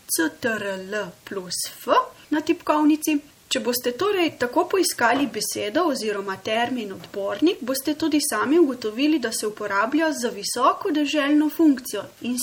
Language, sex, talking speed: Italian, female, 125 wpm